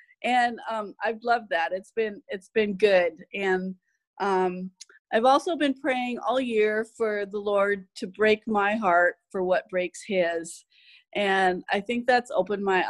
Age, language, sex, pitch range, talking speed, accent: 40-59, English, female, 185-235 Hz, 165 wpm, American